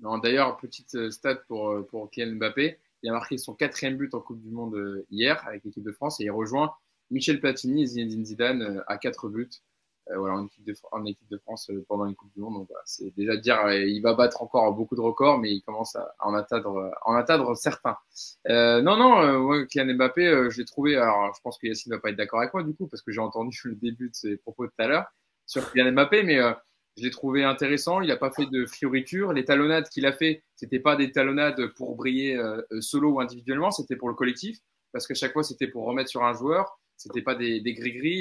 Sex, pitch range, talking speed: male, 115-145 Hz, 245 wpm